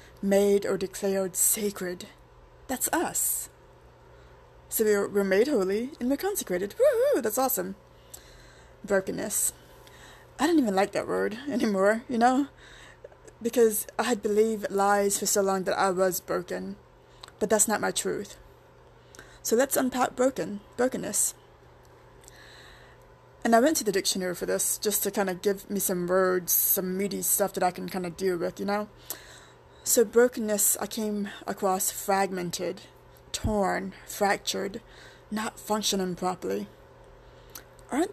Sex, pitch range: female, 190-230 Hz